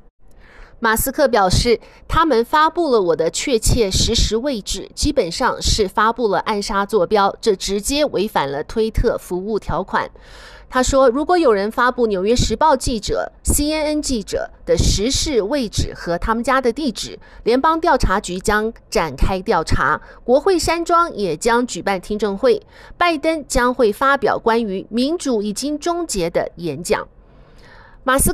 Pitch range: 215-295 Hz